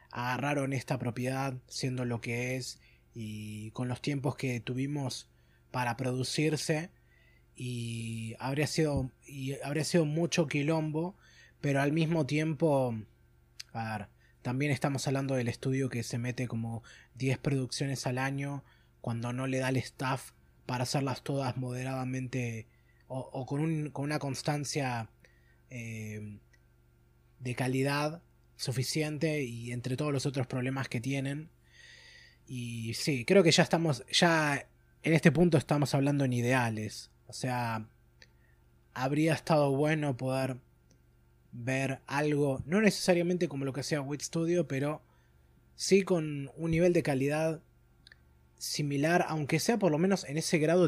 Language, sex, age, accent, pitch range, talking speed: Spanish, male, 20-39, Argentinian, 115-150 Hz, 140 wpm